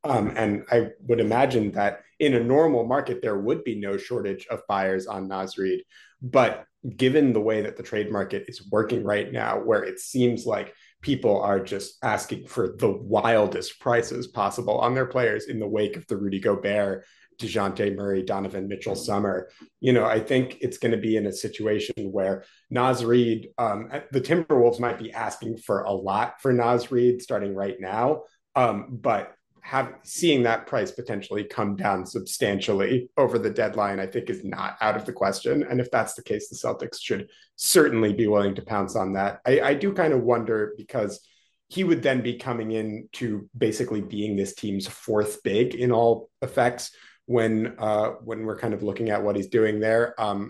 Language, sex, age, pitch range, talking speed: English, male, 30-49, 100-120 Hz, 190 wpm